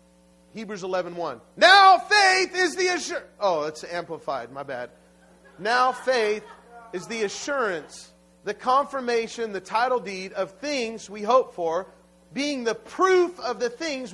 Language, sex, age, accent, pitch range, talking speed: English, male, 40-59, American, 165-235 Hz, 135 wpm